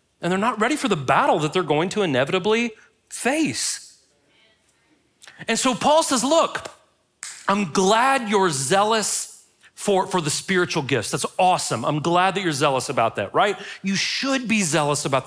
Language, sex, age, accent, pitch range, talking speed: English, male, 40-59, American, 135-195 Hz, 165 wpm